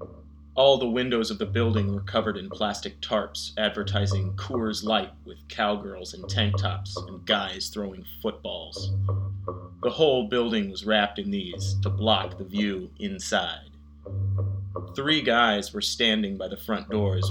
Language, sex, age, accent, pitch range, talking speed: English, male, 30-49, American, 95-105 Hz, 150 wpm